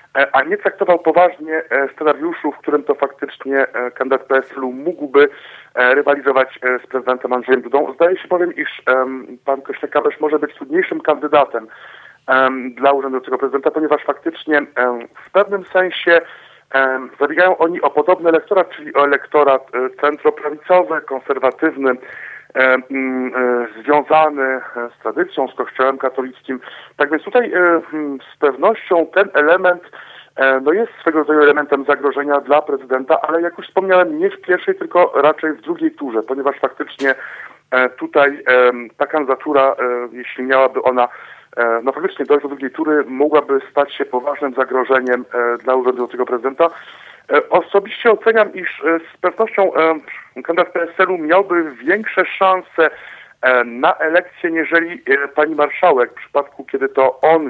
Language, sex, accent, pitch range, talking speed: Polish, male, native, 130-165 Hz, 125 wpm